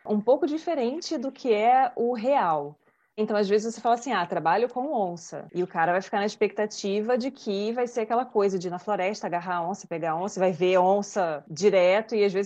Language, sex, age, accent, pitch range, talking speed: Portuguese, female, 20-39, Brazilian, 185-240 Hz, 235 wpm